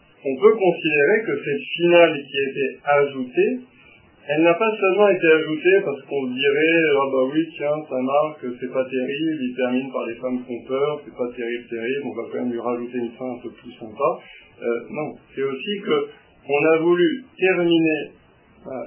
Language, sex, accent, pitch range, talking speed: French, male, French, 125-165 Hz, 205 wpm